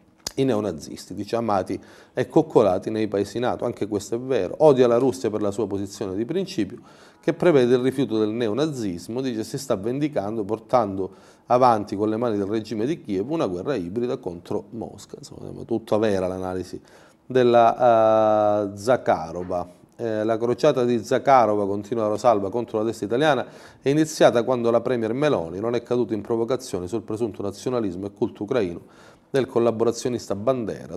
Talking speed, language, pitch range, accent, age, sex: 165 wpm, Italian, 100-120 Hz, native, 30-49, male